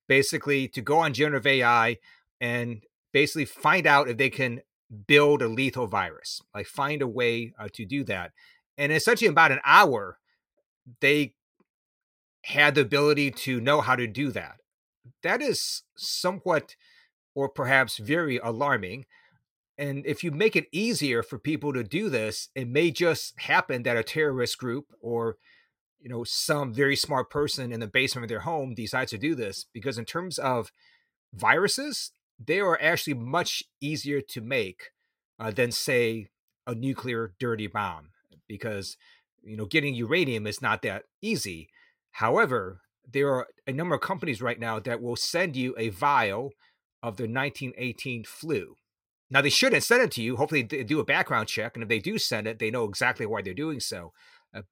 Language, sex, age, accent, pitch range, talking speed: English, male, 30-49, American, 120-150 Hz, 170 wpm